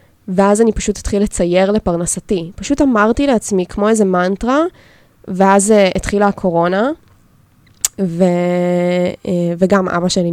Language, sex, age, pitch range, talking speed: Hebrew, female, 20-39, 175-205 Hz, 120 wpm